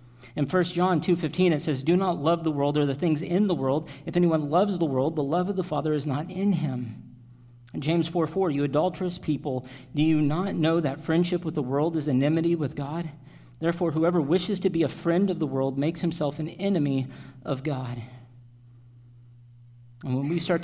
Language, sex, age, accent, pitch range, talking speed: English, male, 40-59, American, 135-165 Hz, 205 wpm